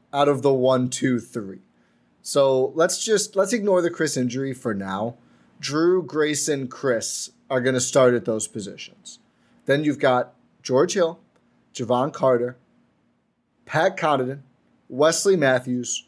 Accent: American